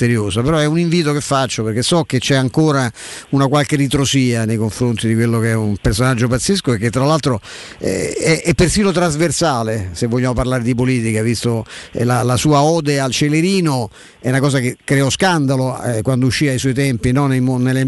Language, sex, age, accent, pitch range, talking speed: Italian, male, 50-69, native, 120-155 Hz, 180 wpm